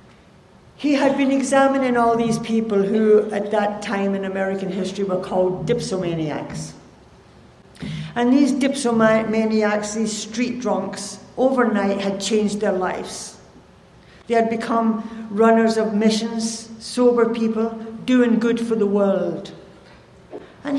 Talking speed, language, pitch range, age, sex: 120 wpm, English, 195-230 Hz, 60-79, female